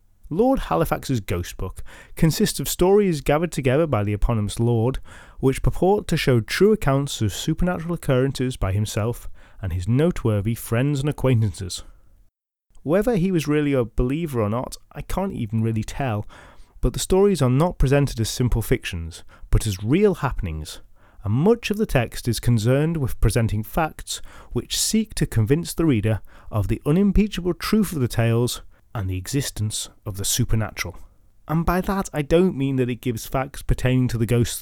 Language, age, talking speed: English, 30-49, 170 wpm